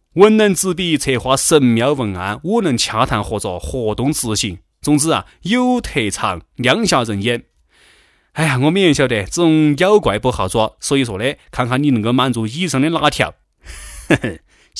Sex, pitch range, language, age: male, 105-150 Hz, Chinese, 30-49